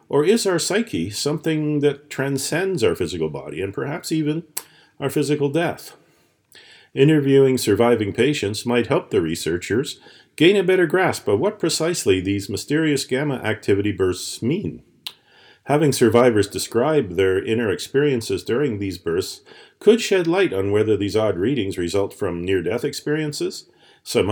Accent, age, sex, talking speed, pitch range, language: American, 40-59, male, 145 wpm, 105-175 Hz, English